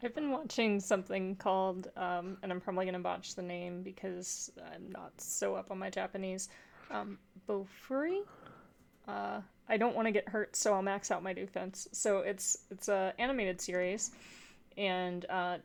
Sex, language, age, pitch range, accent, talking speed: female, English, 30-49, 180-210 Hz, American, 170 wpm